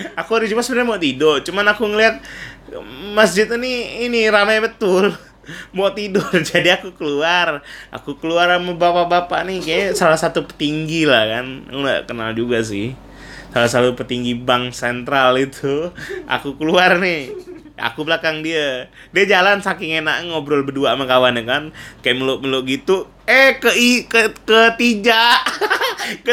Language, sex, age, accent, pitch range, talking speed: Indonesian, male, 20-39, native, 165-255 Hz, 140 wpm